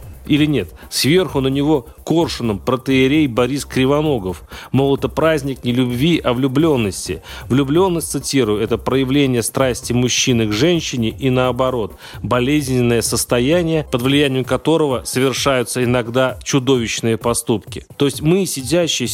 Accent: native